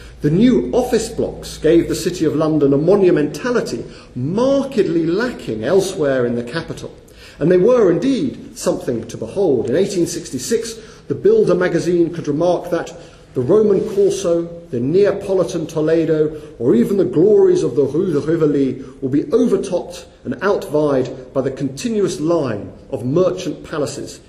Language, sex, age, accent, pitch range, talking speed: English, male, 40-59, British, 140-195 Hz, 145 wpm